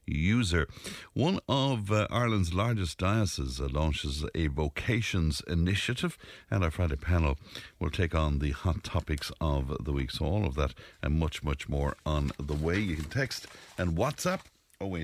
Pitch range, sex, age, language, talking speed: 75-100 Hz, male, 60-79, English, 170 wpm